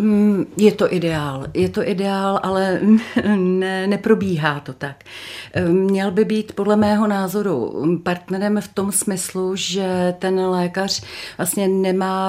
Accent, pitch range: native, 170-190 Hz